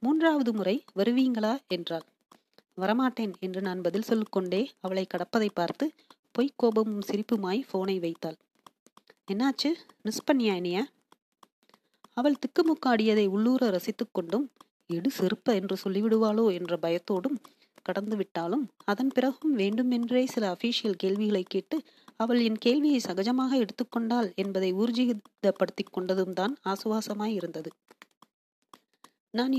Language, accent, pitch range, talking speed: Tamil, native, 190-245 Hz, 100 wpm